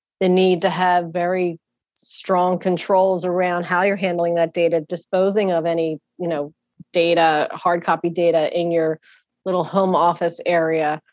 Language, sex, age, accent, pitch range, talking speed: English, female, 30-49, American, 165-180 Hz, 150 wpm